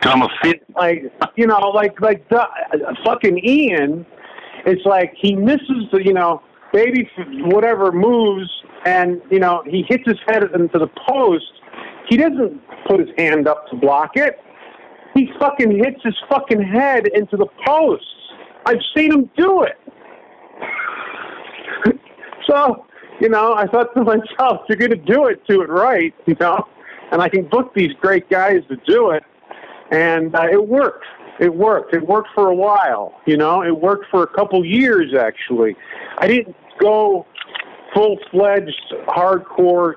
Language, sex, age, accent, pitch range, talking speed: English, male, 50-69, American, 165-225 Hz, 160 wpm